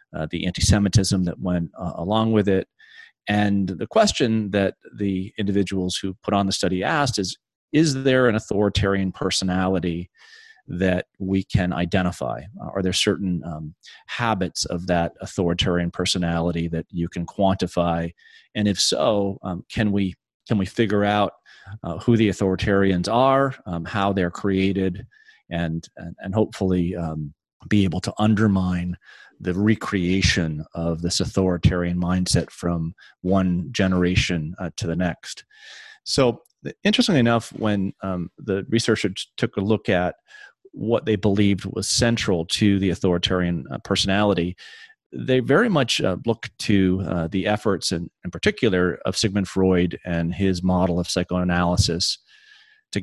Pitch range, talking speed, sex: 90-105 Hz, 145 wpm, male